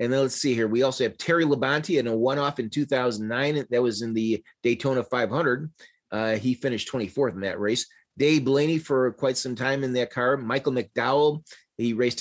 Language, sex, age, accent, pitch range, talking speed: English, male, 30-49, American, 110-150 Hz, 200 wpm